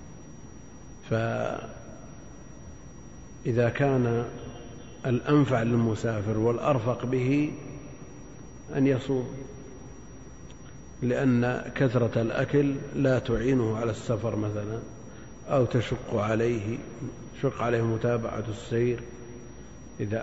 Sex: male